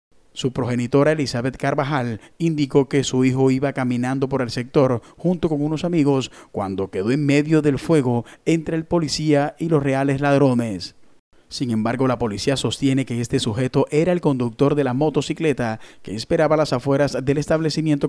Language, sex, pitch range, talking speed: Spanish, male, 120-150 Hz, 170 wpm